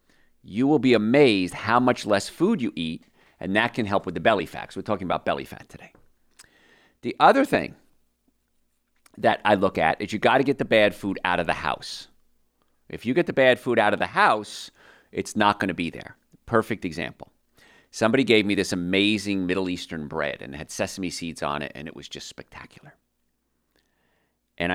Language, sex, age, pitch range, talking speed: English, male, 40-59, 85-120 Hz, 200 wpm